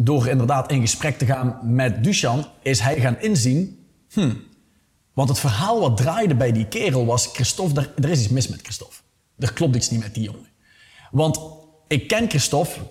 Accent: Dutch